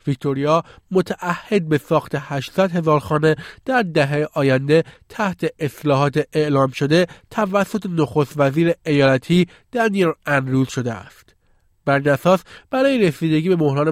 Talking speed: 115 wpm